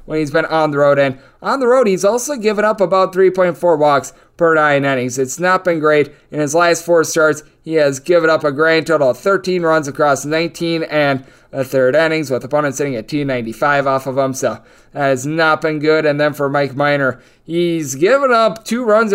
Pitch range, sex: 145-185 Hz, male